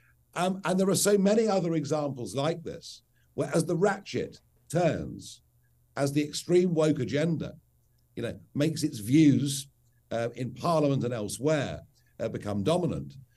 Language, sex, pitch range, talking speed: English, male, 120-160 Hz, 150 wpm